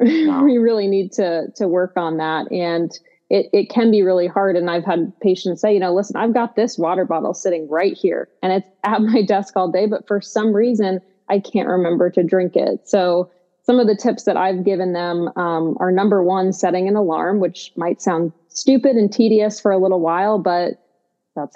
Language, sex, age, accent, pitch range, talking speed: English, female, 20-39, American, 175-205 Hz, 210 wpm